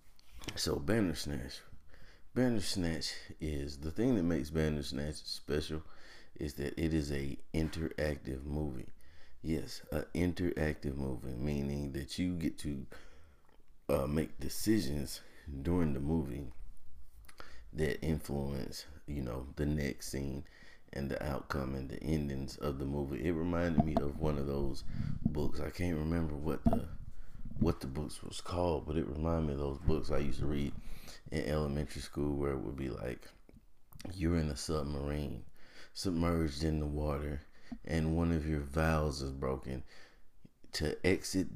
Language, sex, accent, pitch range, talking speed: English, male, American, 70-80 Hz, 150 wpm